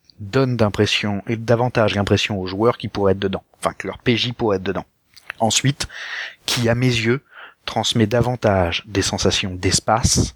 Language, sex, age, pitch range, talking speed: French, male, 30-49, 95-115 Hz, 160 wpm